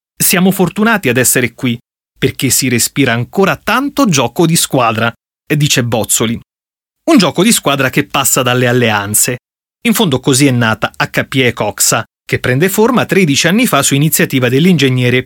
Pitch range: 125-185 Hz